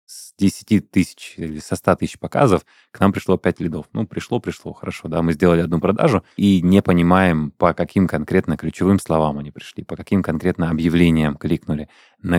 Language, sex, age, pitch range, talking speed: Russian, male, 20-39, 80-95 Hz, 185 wpm